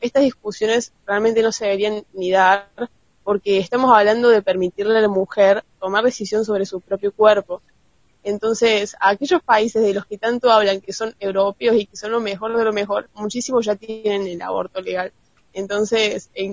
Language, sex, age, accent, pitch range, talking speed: Spanish, female, 20-39, Argentinian, 200-230 Hz, 180 wpm